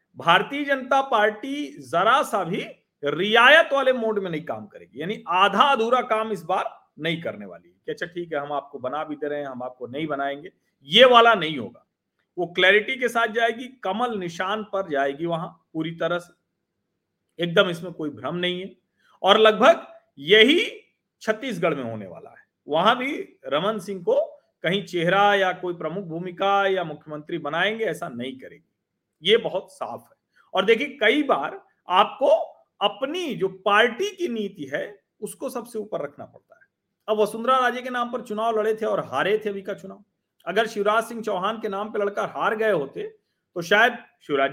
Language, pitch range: Hindi, 175-240 Hz